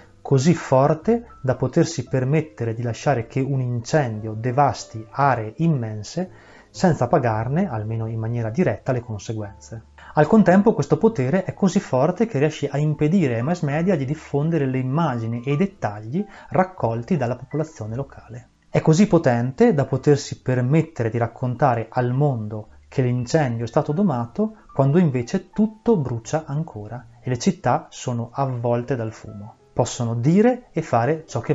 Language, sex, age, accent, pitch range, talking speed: Italian, male, 30-49, native, 115-155 Hz, 150 wpm